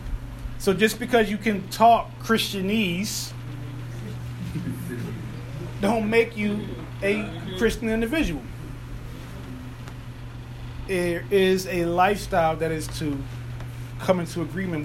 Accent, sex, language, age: American, male, English, 30-49